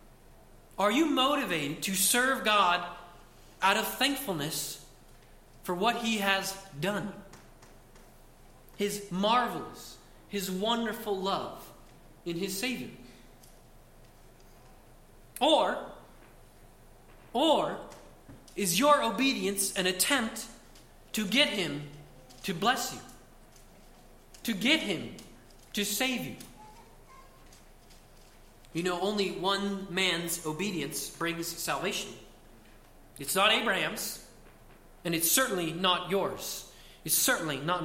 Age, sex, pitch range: 40-59, male, 170-210 Hz